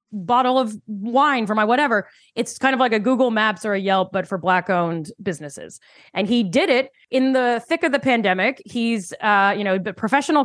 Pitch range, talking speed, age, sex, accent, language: 190-240 Hz, 210 wpm, 20-39, female, American, English